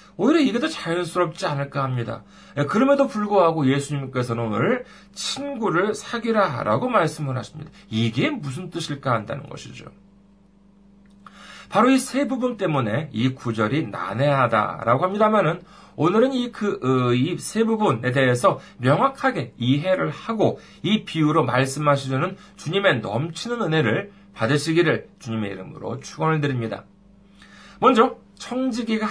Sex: male